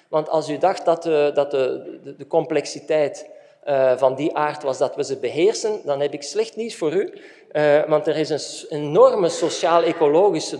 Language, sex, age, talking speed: Dutch, male, 50-69, 165 wpm